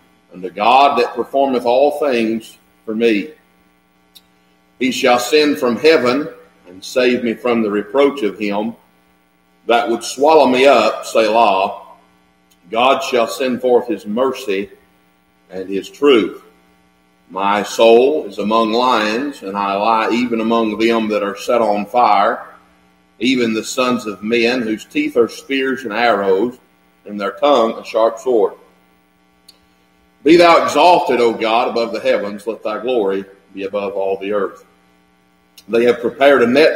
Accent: American